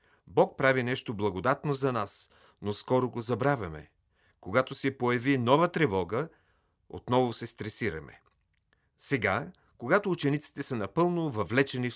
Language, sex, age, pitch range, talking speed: Bulgarian, male, 40-59, 105-140 Hz, 125 wpm